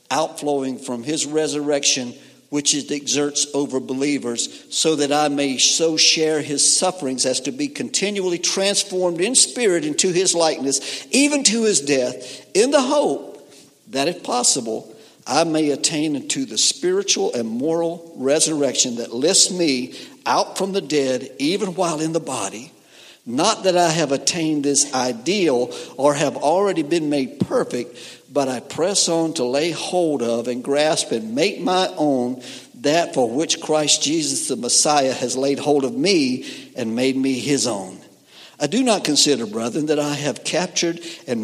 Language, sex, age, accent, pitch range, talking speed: English, male, 60-79, American, 140-185 Hz, 160 wpm